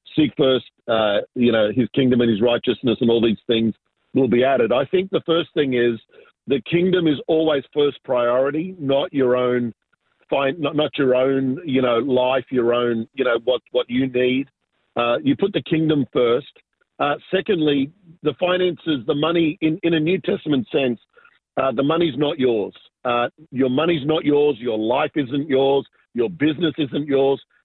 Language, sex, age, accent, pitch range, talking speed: English, male, 50-69, Australian, 125-155 Hz, 180 wpm